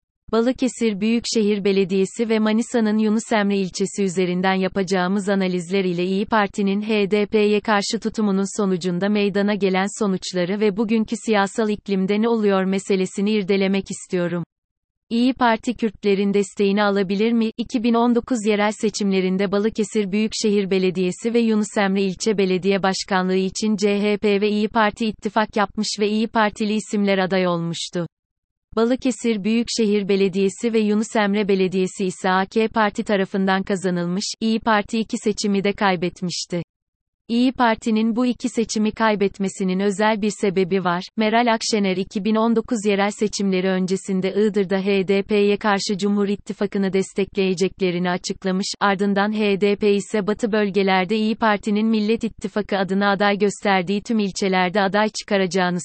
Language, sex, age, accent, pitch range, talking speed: Turkish, female, 30-49, native, 190-220 Hz, 125 wpm